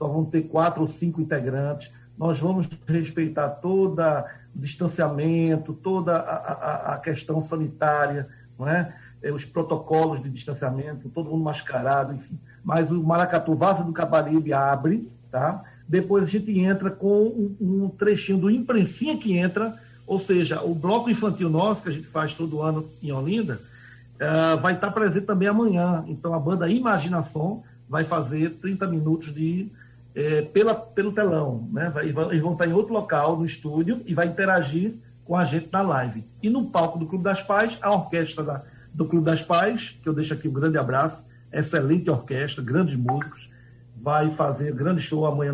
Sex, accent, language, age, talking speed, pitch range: male, Brazilian, Portuguese, 60-79, 165 wpm, 145-185 Hz